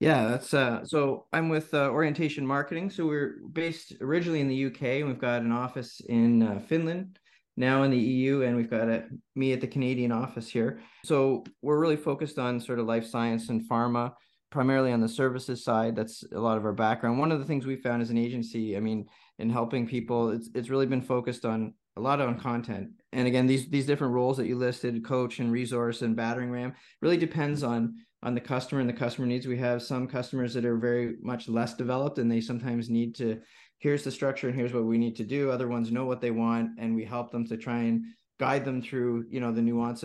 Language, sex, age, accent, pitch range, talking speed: English, male, 30-49, American, 115-130 Hz, 230 wpm